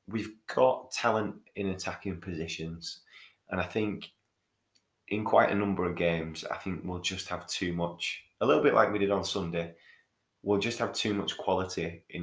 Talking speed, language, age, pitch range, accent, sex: 180 wpm, English, 30-49, 80-100 Hz, British, male